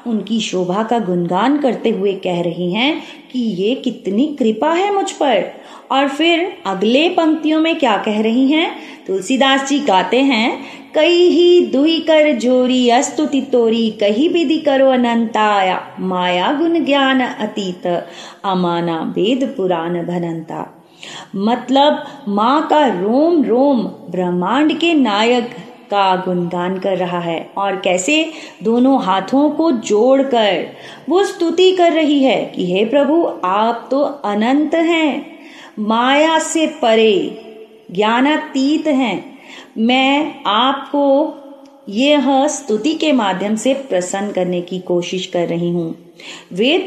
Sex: female